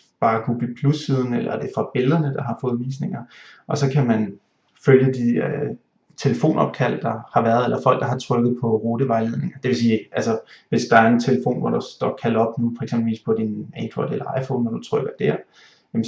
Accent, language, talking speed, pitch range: native, Danish, 210 wpm, 115-130 Hz